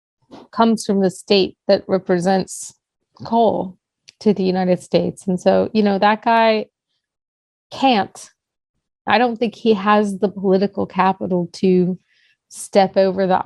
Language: English